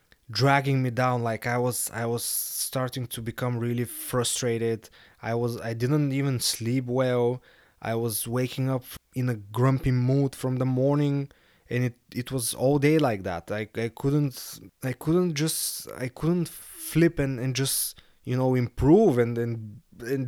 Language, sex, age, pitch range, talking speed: English, male, 20-39, 115-140 Hz, 170 wpm